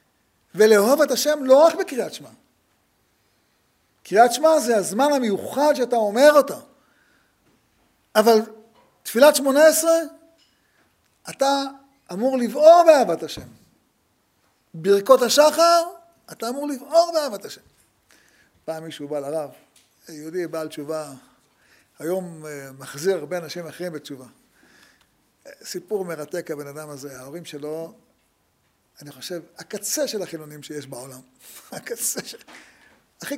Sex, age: male, 50-69